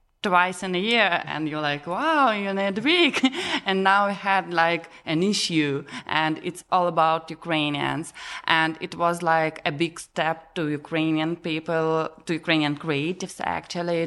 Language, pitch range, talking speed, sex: English, 155-180 Hz, 160 wpm, female